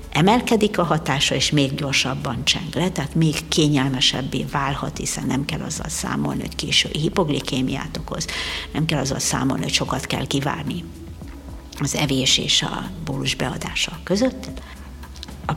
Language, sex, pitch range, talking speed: Hungarian, female, 130-170 Hz, 145 wpm